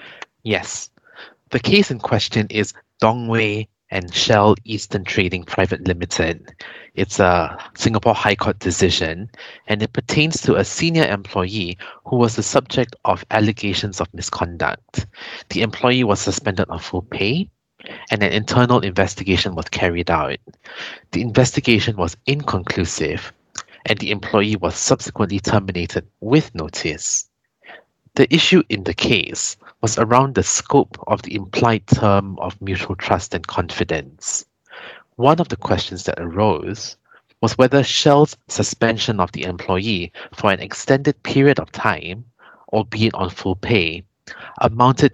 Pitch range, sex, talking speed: 95-120 Hz, male, 135 wpm